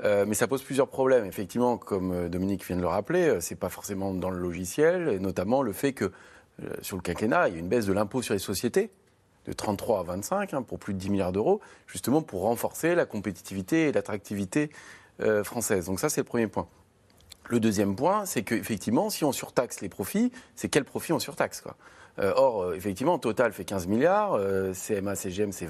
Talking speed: 220 wpm